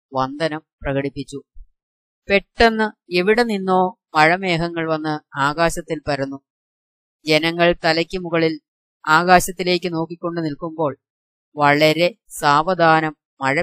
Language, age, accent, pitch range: Malayalam, 20-39, native, 150-185 Hz